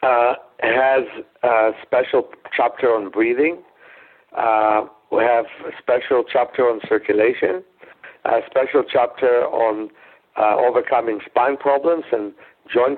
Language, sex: English, male